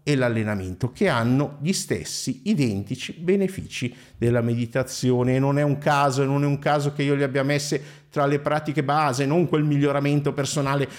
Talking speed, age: 175 wpm, 50-69